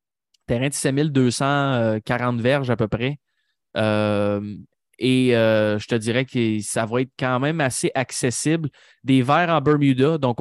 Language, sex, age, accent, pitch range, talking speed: French, male, 20-39, Canadian, 115-145 Hz, 150 wpm